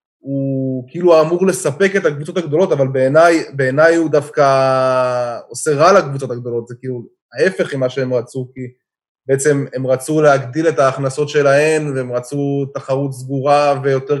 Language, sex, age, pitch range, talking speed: Hebrew, male, 20-39, 135-165 Hz, 150 wpm